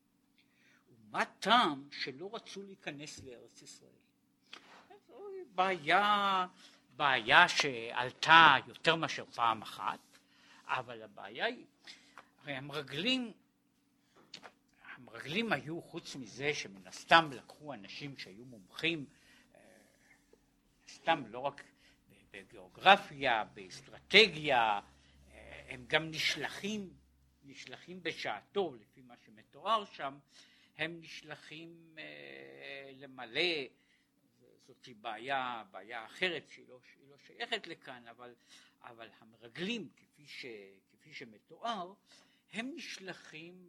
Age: 60-79